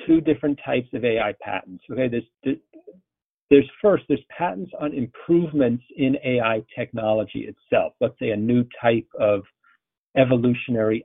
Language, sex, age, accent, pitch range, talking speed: English, male, 50-69, American, 110-140 Hz, 135 wpm